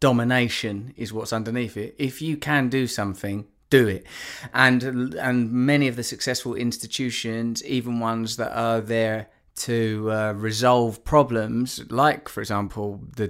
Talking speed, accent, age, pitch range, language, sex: 145 wpm, British, 20-39, 110-125 Hz, English, male